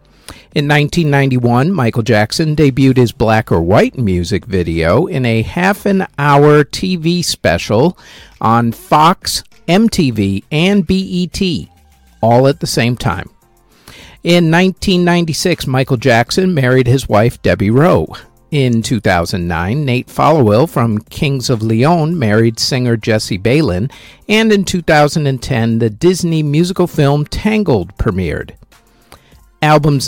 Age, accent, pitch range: 50-69, American, 110-155 Hz